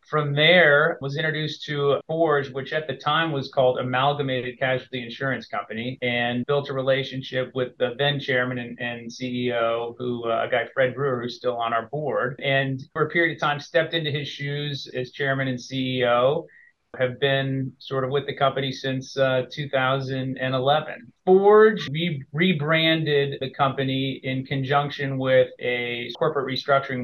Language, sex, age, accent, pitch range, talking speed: English, male, 30-49, American, 125-140 Hz, 165 wpm